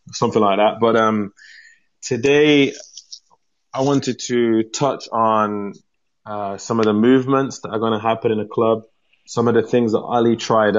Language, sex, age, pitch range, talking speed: English, male, 20-39, 100-130 Hz, 170 wpm